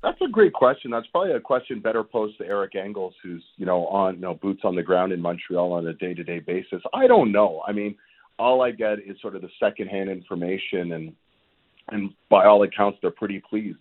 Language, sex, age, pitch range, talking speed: English, male, 40-59, 90-110 Hz, 225 wpm